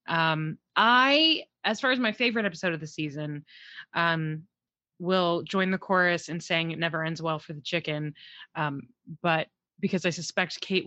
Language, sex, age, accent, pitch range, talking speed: English, female, 20-39, American, 165-205 Hz, 170 wpm